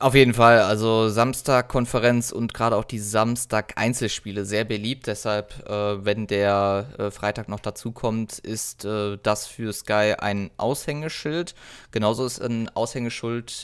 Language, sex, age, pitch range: German, male, 20-39, 105-125 Hz